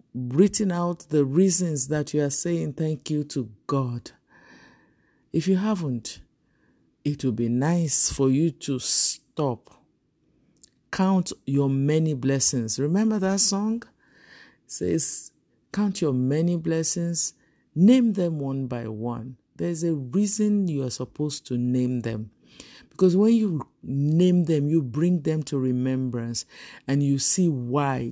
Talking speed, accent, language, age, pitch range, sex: 135 wpm, Nigerian, English, 50-69, 125-165 Hz, male